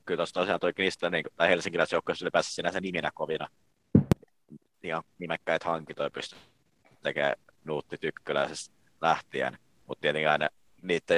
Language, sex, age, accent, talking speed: Finnish, male, 30-49, native, 125 wpm